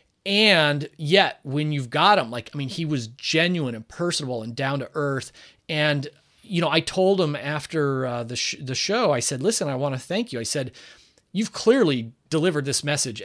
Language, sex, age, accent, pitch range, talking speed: English, male, 30-49, American, 135-190 Hz, 205 wpm